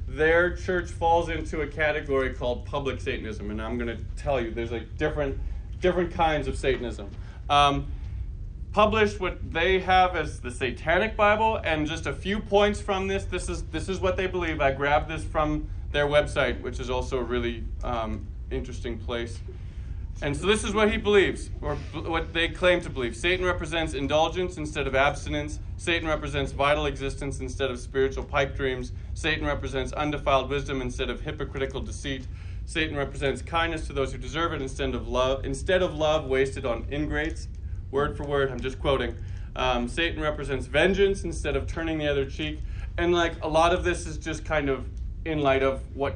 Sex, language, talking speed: male, English, 185 wpm